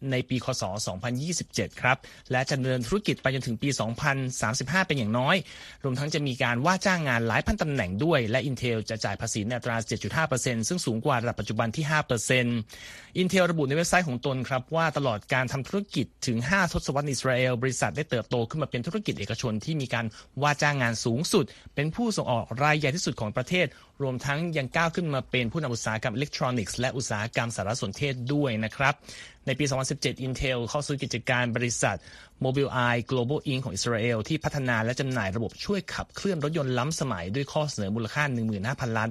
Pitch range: 120-150 Hz